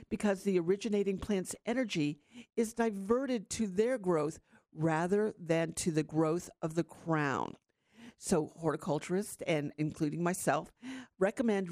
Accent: American